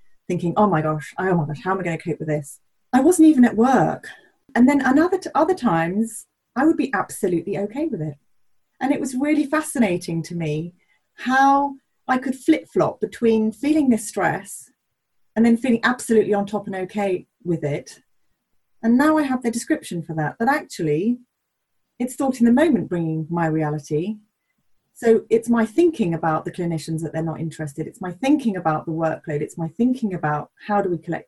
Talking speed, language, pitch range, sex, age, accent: 195 wpm, English, 170-255 Hz, female, 30-49, British